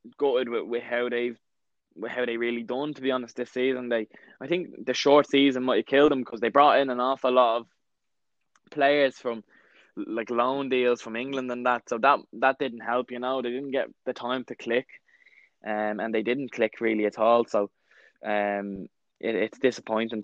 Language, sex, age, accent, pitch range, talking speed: English, male, 10-29, Irish, 110-130 Hz, 205 wpm